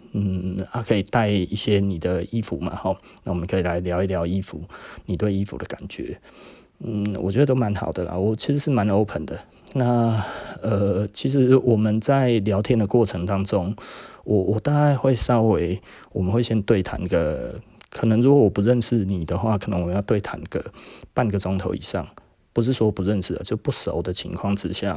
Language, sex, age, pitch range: Chinese, male, 20-39, 95-115 Hz